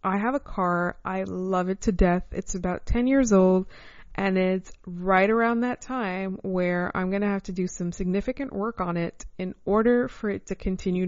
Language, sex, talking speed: English, female, 205 wpm